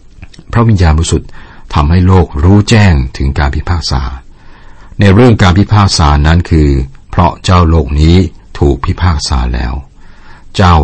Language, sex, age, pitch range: Thai, male, 60-79, 70-90 Hz